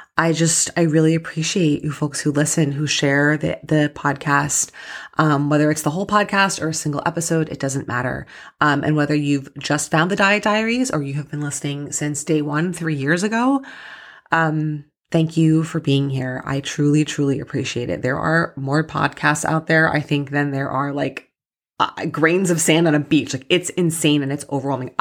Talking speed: 200 wpm